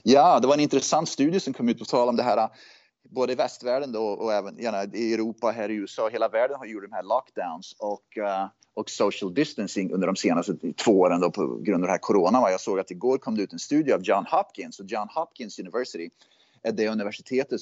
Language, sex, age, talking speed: Swedish, male, 30-49, 235 wpm